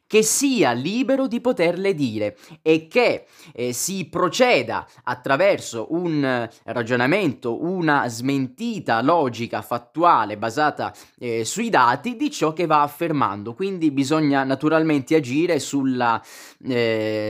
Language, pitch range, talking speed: Italian, 125-165 Hz, 115 wpm